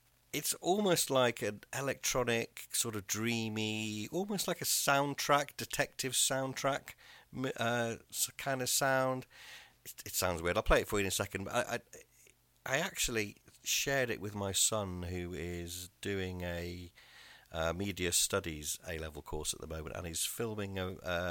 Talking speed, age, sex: 155 wpm, 50-69, male